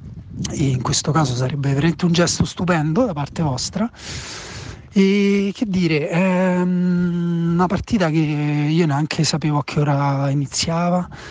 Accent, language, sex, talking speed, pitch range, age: native, Italian, male, 140 wpm, 140-170 Hz, 30-49